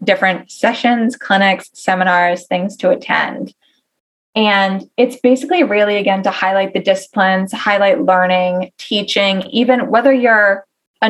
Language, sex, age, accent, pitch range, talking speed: English, female, 20-39, American, 185-235 Hz, 125 wpm